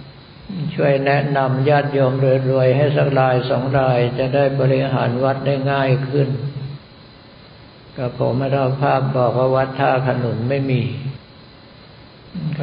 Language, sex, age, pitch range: Thai, male, 60-79, 125-140 Hz